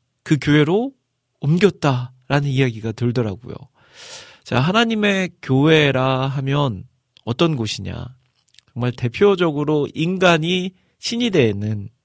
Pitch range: 110-155 Hz